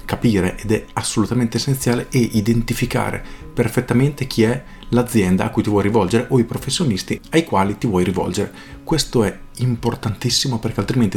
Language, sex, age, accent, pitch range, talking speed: Italian, male, 40-59, native, 100-125 Hz, 155 wpm